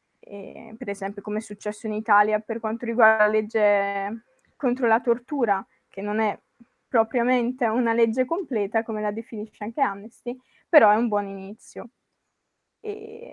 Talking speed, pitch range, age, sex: 155 wpm, 210-240 Hz, 20-39, female